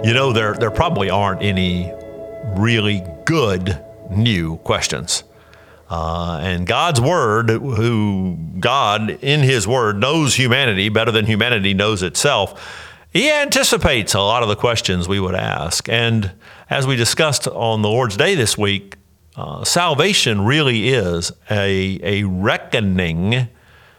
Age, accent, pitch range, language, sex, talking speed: 50-69, American, 90-130 Hz, English, male, 135 wpm